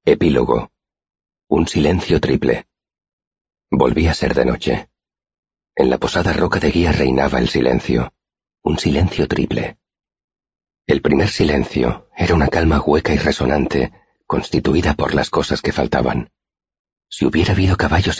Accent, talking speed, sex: Spanish, 130 wpm, male